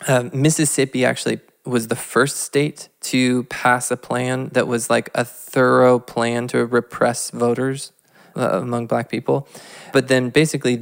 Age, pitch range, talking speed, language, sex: 20-39, 120-135 Hz, 150 wpm, English, male